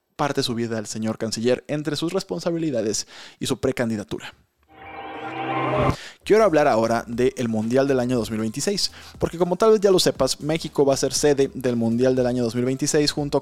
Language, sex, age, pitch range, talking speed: Spanish, male, 20-39, 120-145 Hz, 170 wpm